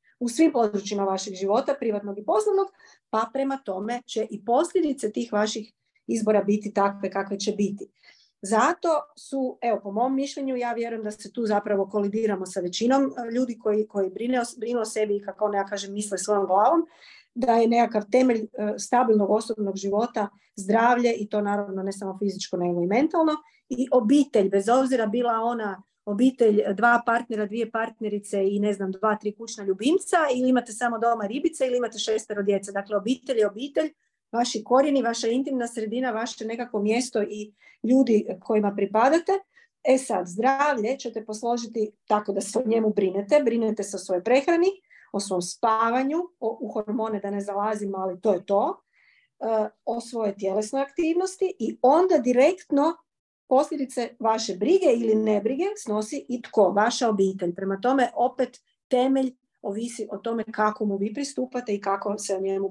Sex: female